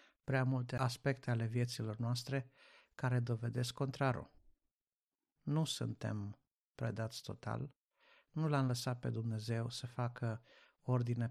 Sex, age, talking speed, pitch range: male, 50-69, 110 wpm, 115-130 Hz